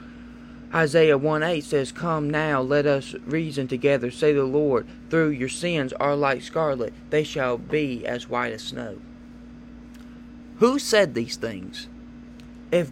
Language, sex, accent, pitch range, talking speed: English, male, American, 125-180 Hz, 150 wpm